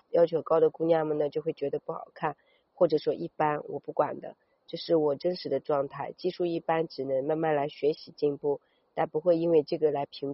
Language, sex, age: Chinese, female, 30-49